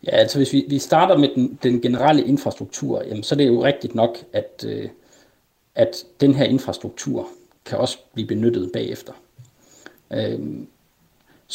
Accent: native